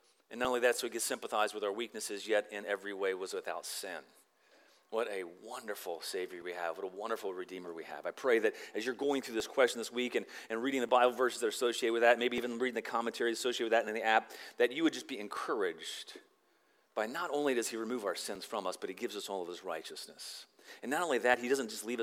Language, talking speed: English, 260 wpm